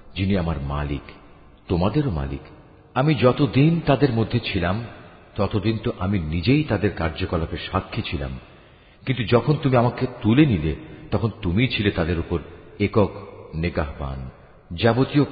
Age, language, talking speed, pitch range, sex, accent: 50-69, Bengali, 65 wpm, 80-120 Hz, male, native